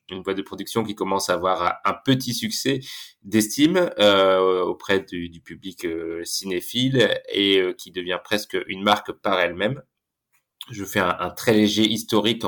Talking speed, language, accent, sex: 175 wpm, French, French, male